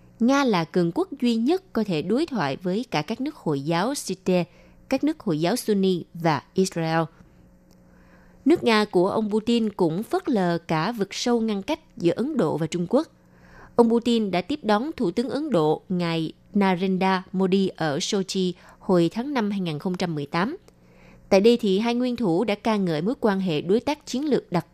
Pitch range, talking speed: 170-235 Hz, 190 wpm